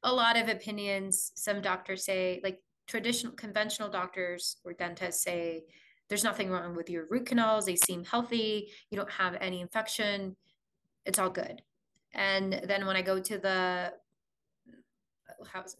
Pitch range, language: 180-210 Hz, English